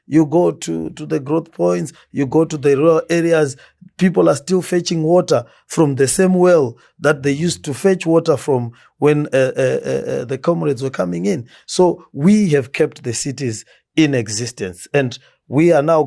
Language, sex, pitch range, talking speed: English, male, 120-150 Hz, 185 wpm